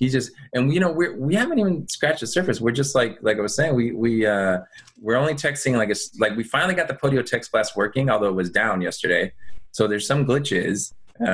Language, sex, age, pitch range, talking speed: English, male, 20-39, 90-125 Hz, 250 wpm